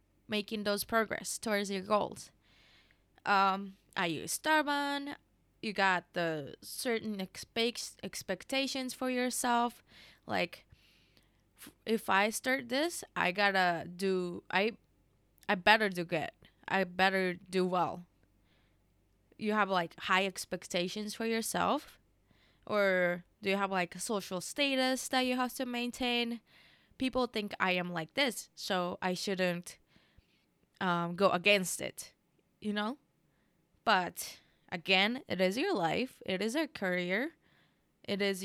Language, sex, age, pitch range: Japanese, female, 20-39, 185-250 Hz